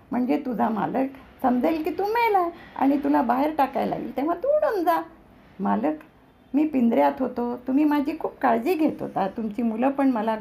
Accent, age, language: native, 50-69, Marathi